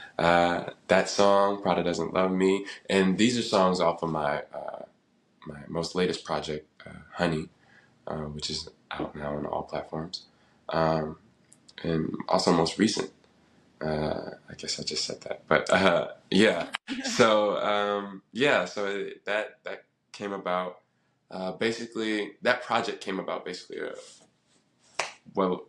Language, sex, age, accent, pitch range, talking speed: English, male, 20-39, American, 80-100 Hz, 145 wpm